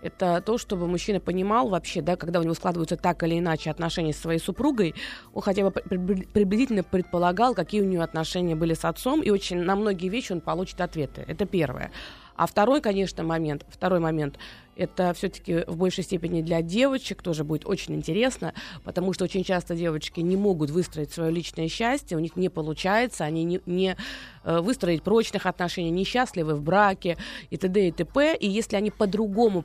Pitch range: 175-215 Hz